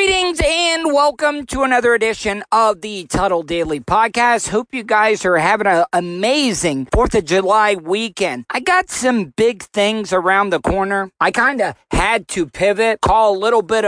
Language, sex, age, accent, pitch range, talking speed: English, male, 40-59, American, 180-225 Hz, 175 wpm